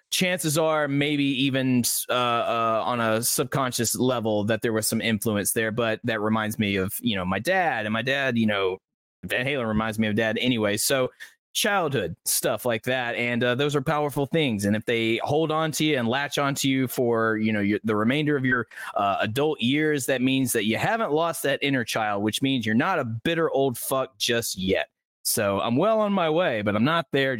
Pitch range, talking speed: 115-145 Hz, 215 wpm